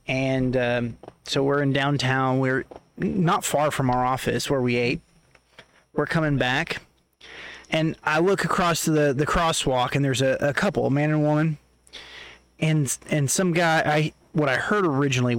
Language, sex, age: English, male, 30-49